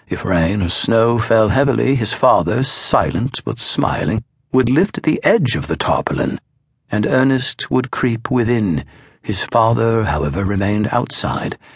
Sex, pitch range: male, 110-135 Hz